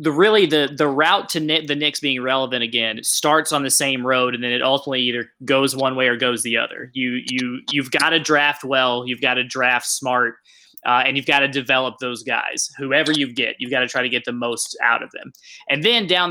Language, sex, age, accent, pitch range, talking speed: English, male, 20-39, American, 130-155 Hz, 245 wpm